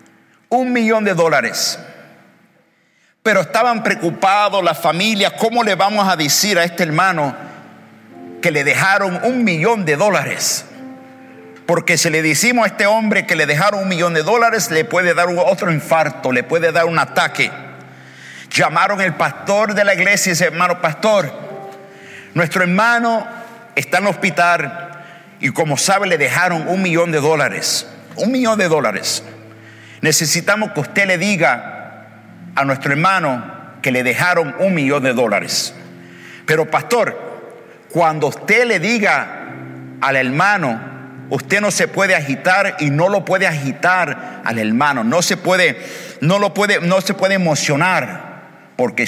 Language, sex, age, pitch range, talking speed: English, male, 60-79, 150-200 Hz, 145 wpm